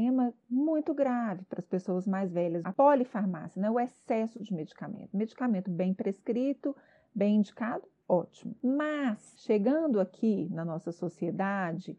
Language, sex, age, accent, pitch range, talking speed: Portuguese, female, 30-49, Brazilian, 195-275 Hz, 130 wpm